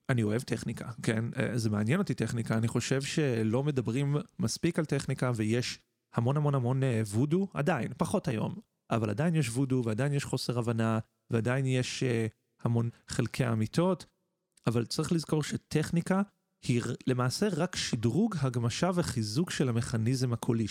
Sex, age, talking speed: male, 30-49, 140 wpm